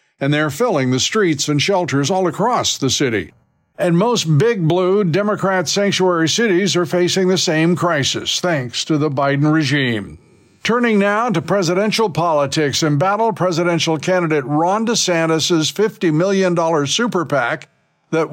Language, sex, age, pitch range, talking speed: English, male, 60-79, 150-185 Hz, 145 wpm